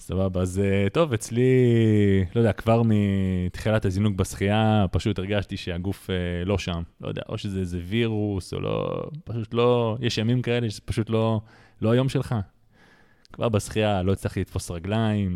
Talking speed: 165 wpm